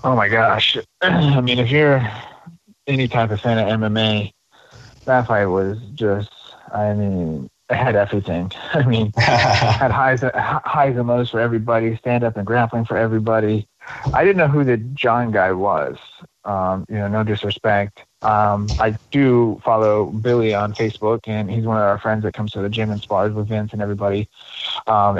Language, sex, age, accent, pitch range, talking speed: English, male, 30-49, American, 105-115 Hz, 175 wpm